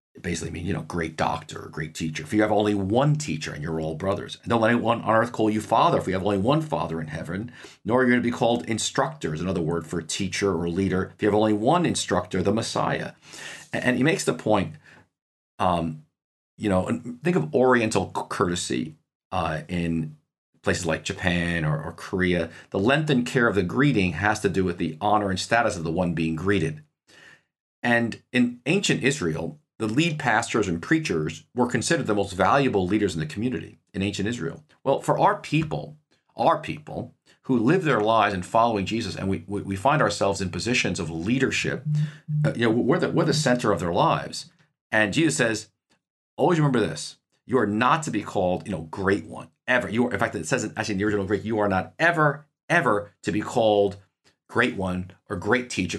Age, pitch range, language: 40-59, 90-120 Hz, English